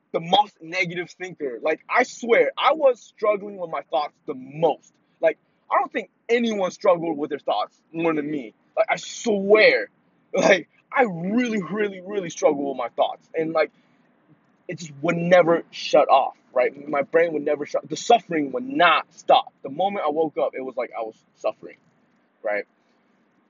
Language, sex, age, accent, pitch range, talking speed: English, male, 20-39, American, 150-220 Hz, 180 wpm